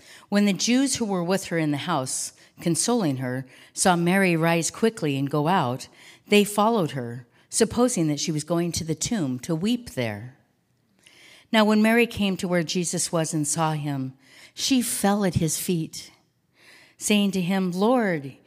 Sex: female